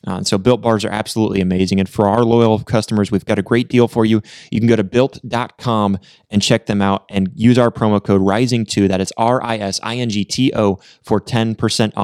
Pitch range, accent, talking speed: 100-115 Hz, American, 230 wpm